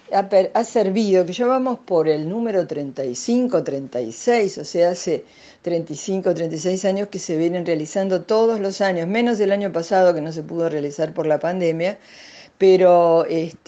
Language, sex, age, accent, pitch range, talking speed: Spanish, female, 50-69, Argentinian, 160-205 Hz, 160 wpm